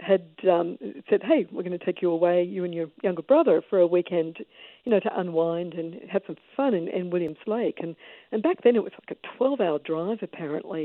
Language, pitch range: English, 165-220 Hz